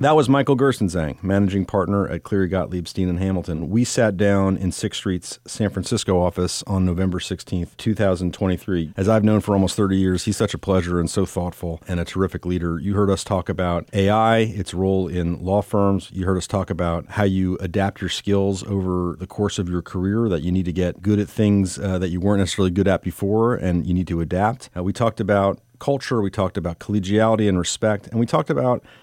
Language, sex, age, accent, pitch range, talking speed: English, male, 40-59, American, 85-100 Hz, 215 wpm